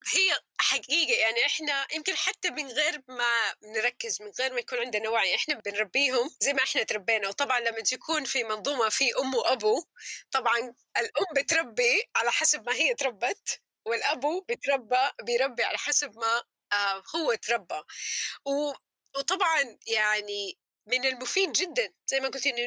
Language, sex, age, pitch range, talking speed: Arabic, female, 20-39, 235-360 Hz, 150 wpm